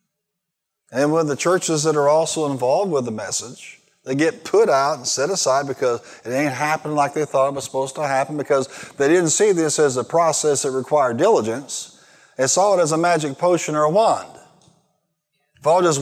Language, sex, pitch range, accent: English, male, 145-180 Hz, American